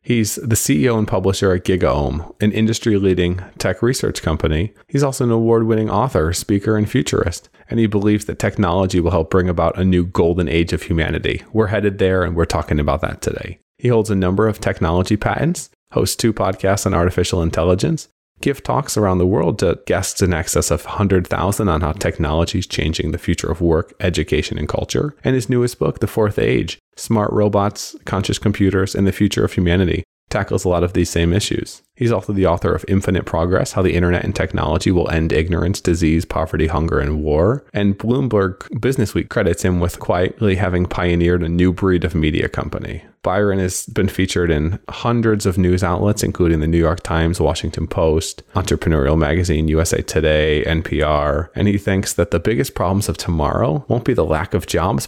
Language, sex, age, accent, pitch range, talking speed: English, male, 30-49, American, 85-105 Hz, 190 wpm